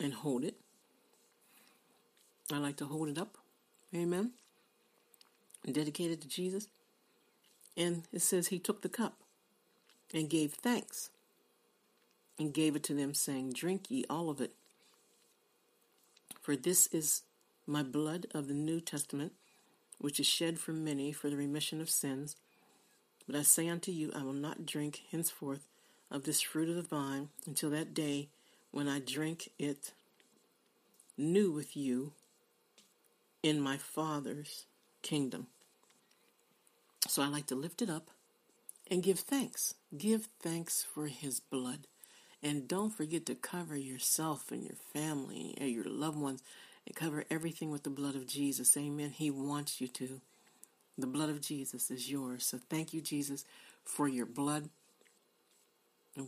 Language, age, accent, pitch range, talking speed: English, 50-69, American, 140-165 Hz, 145 wpm